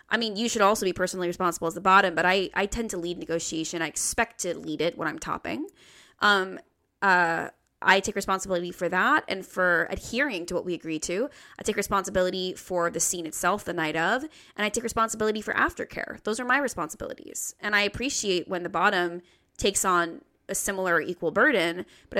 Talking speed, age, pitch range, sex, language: 205 wpm, 20-39, 175-210 Hz, female, English